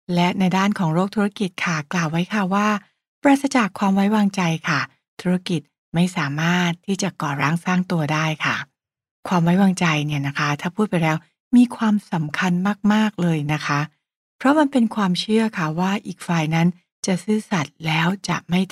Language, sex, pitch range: English, female, 170-215 Hz